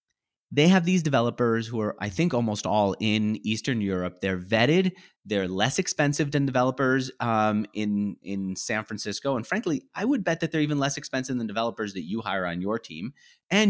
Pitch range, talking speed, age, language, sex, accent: 95-140 Hz, 195 wpm, 30-49, English, male, American